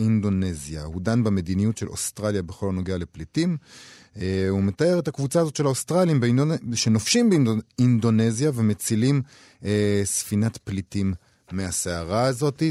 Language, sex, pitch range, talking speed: Hebrew, male, 100-135 Hz, 130 wpm